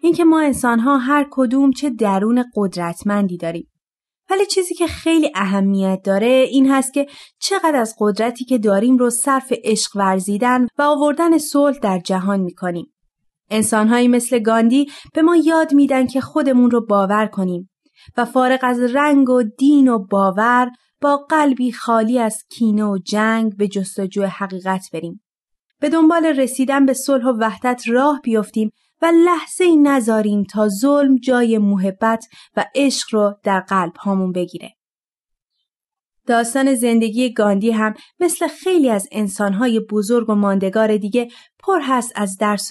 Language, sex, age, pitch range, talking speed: Persian, female, 30-49, 205-280 Hz, 145 wpm